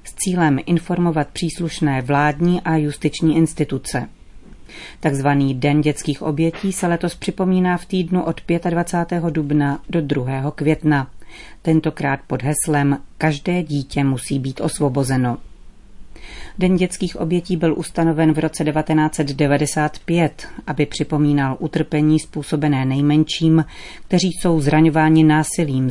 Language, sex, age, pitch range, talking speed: Czech, female, 40-59, 145-170 Hz, 110 wpm